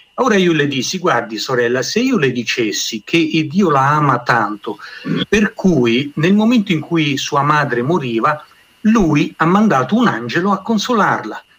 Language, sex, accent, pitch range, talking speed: Italian, male, native, 130-180 Hz, 160 wpm